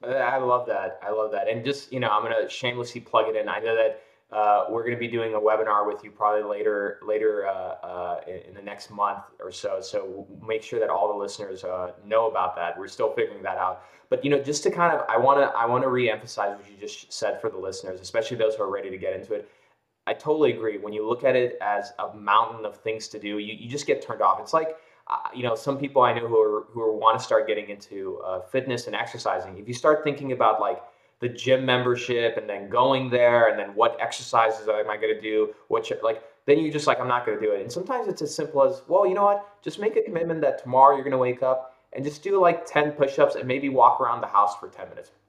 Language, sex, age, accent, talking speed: English, male, 20-39, American, 265 wpm